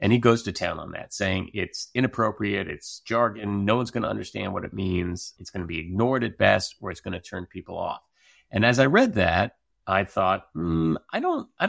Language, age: English, 30-49